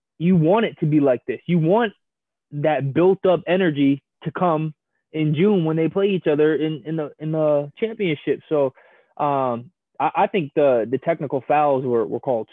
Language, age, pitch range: English, 20-39, 140-180 Hz